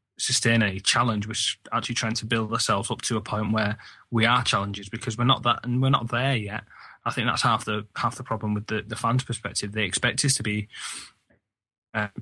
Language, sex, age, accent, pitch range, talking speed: English, male, 20-39, British, 105-120 Hz, 220 wpm